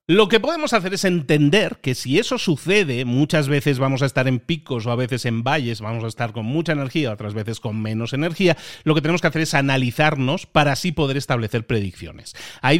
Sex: male